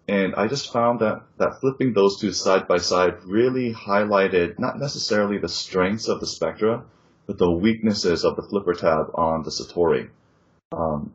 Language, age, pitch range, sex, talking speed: English, 30-49, 85-110 Hz, male, 170 wpm